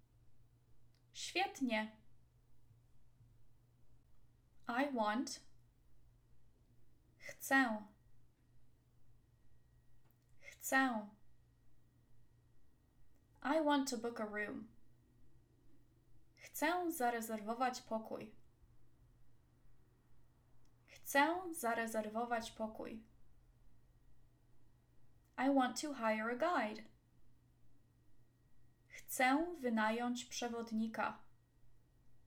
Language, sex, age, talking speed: English, female, 10-29, 50 wpm